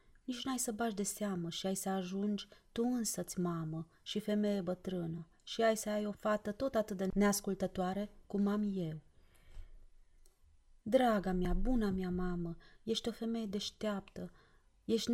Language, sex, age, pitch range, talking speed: Romanian, female, 30-49, 160-205 Hz, 155 wpm